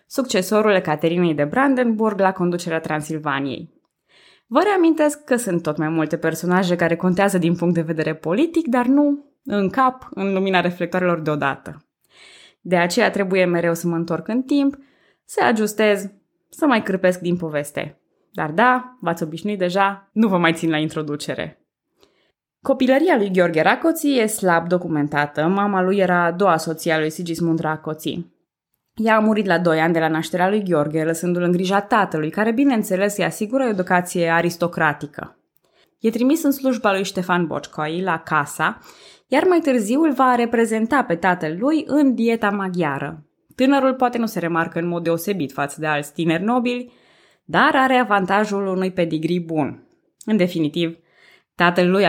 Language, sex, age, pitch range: Romanian, female, 20-39, 165-230 Hz